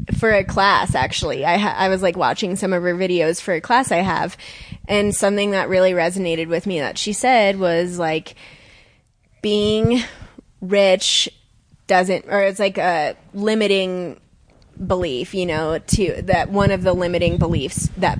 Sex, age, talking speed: female, 20-39, 165 wpm